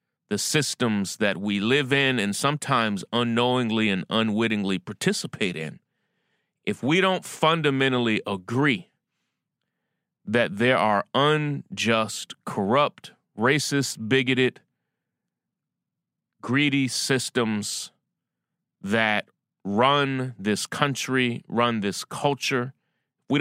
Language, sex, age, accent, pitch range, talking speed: English, male, 30-49, American, 105-140 Hz, 90 wpm